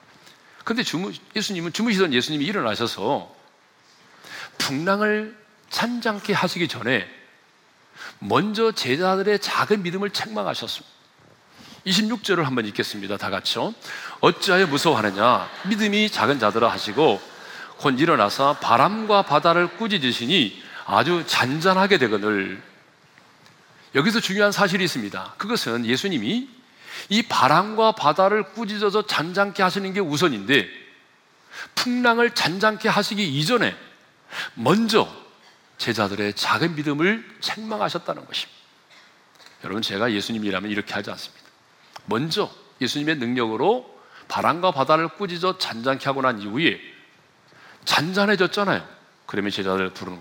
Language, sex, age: Korean, male, 40-59